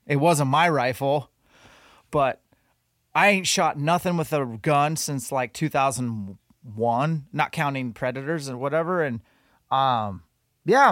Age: 30-49